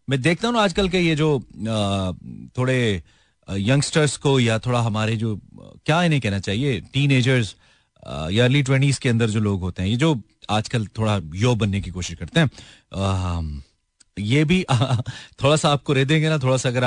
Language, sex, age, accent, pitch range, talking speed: Hindi, male, 30-49, native, 105-165 Hz, 185 wpm